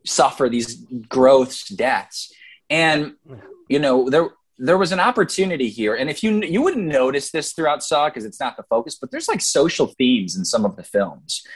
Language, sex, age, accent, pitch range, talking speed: English, male, 20-39, American, 125-170 Hz, 190 wpm